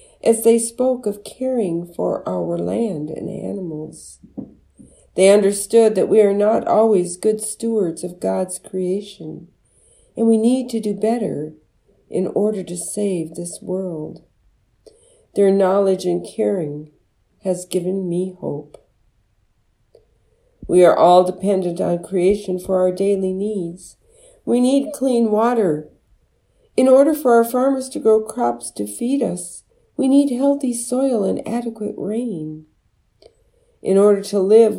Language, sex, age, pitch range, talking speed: English, female, 50-69, 170-230 Hz, 135 wpm